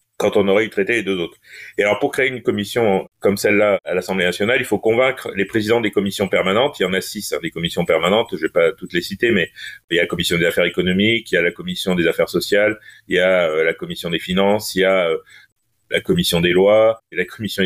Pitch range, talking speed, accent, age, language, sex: 95-130 Hz, 260 wpm, French, 30-49, French, male